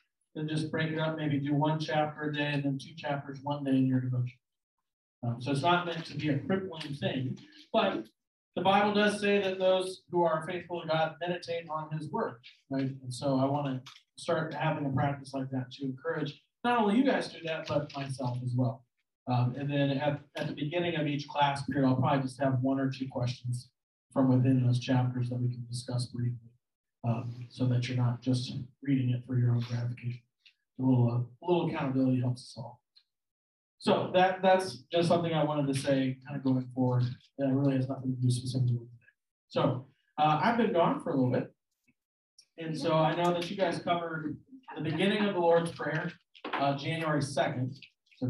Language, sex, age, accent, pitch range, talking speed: English, male, 40-59, American, 130-160 Hz, 205 wpm